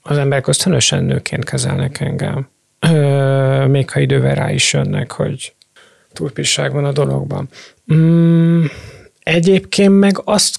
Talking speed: 125 wpm